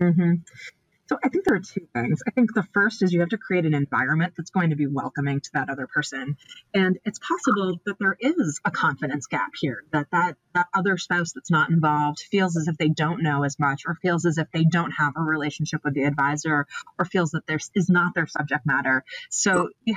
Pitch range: 145-180 Hz